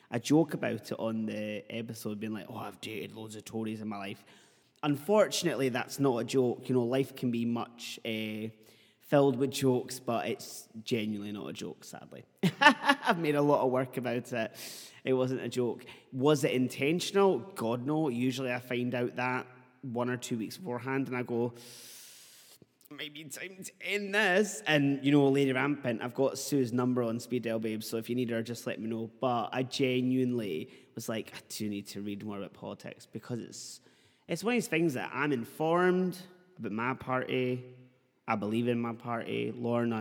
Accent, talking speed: British, 195 wpm